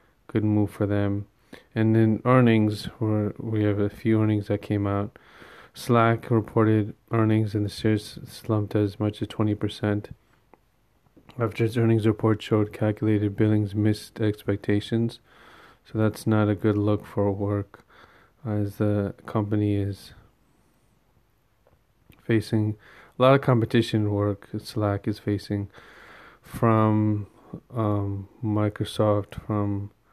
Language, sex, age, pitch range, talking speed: English, male, 20-39, 100-110 Hz, 120 wpm